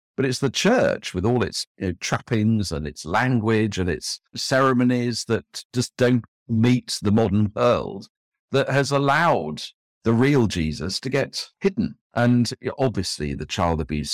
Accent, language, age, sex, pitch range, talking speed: British, English, 50-69, male, 80-120 Hz, 155 wpm